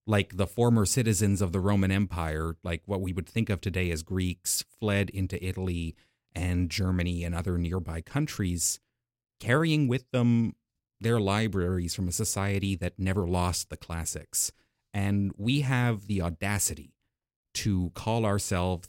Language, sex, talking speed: English, male, 150 wpm